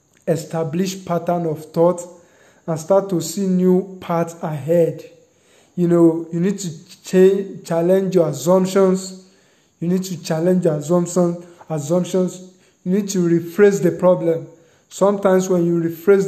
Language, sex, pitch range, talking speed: English, male, 165-185 Hz, 135 wpm